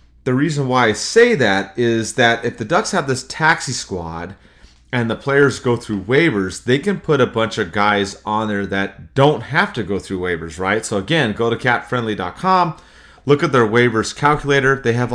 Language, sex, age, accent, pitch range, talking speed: English, male, 30-49, American, 105-140 Hz, 200 wpm